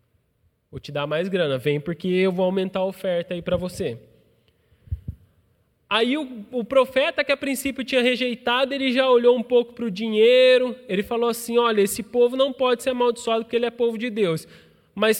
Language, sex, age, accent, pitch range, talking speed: Portuguese, male, 20-39, Brazilian, 170-230 Hz, 195 wpm